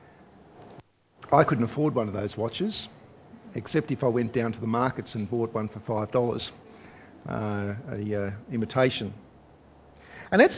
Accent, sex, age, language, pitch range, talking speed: Australian, male, 50-69, English, 120-160 Hz, 145 wpm